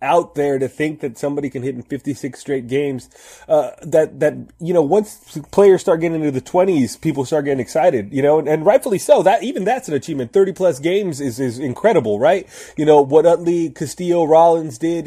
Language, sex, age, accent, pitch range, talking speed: English, male, 30-49, American, 150-205 Hz, 210 wpm